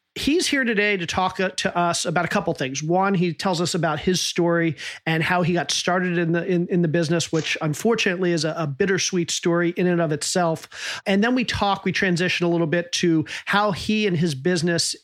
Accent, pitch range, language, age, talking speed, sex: American, 165-195 Hz, English, 40-59, 220 wpm, male